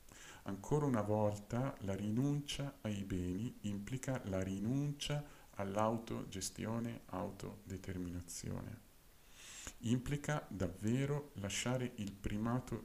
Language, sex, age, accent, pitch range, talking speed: Italian, male, 50-69, native, 95-110 Hz, 80 wpm